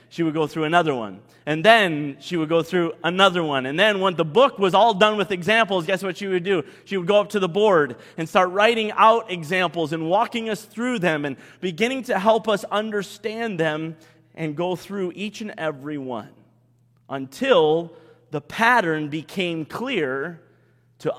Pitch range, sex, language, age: 145-195 Hz, male, English, 30-49